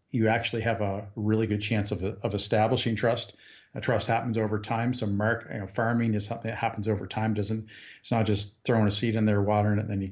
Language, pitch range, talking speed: English, 105-120 Hz, 245 wpm